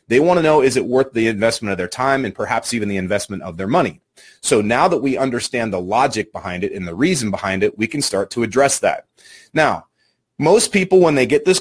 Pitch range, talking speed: 105-140 Hz, 245 wpm